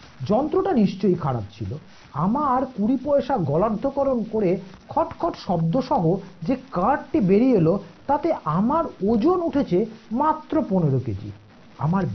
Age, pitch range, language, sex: 50-69, 165-260 Hz, Bengali, male